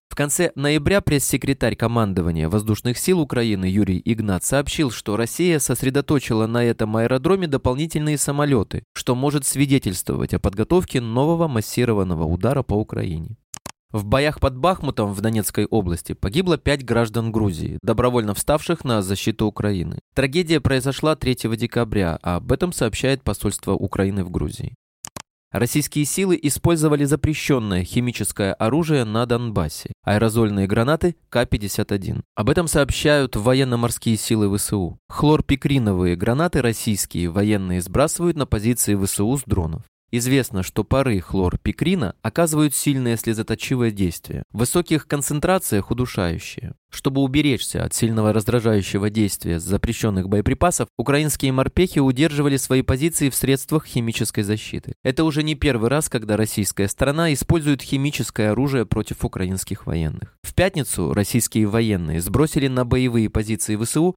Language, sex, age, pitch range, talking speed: Russian, male, 20-39, 105-145 Hz, 125 wpm